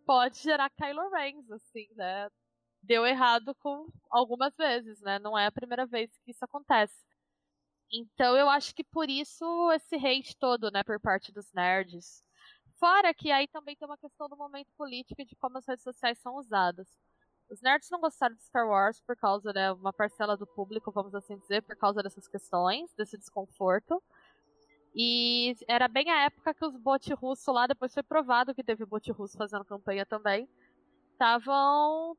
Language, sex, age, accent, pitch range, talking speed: Portuguese, female, 10-29, Brazilian, 215-290 Hz, 180 wpm